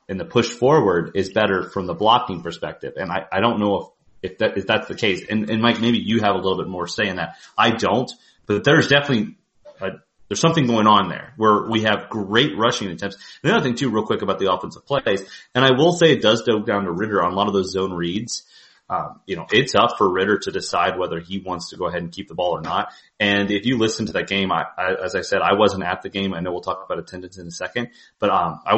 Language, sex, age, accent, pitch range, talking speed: English, male, 30-49, American, 100-130 Hz, 270 wpm